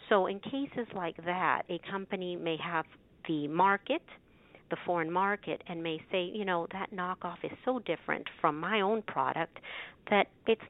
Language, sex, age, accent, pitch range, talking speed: English, female, 50-69, American, 175-255 Hz, 170 wpm